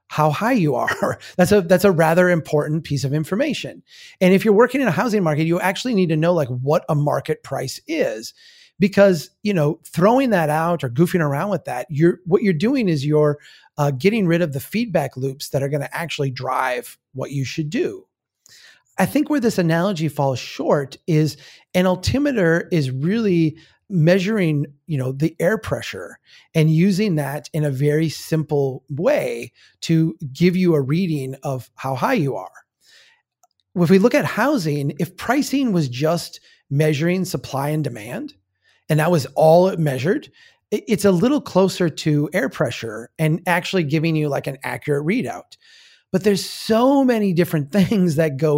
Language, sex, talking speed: English, male, 180 wpm